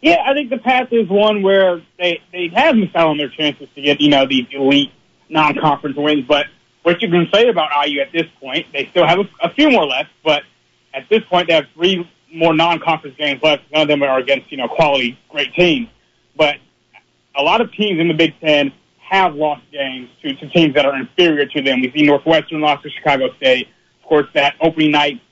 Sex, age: male, 30-49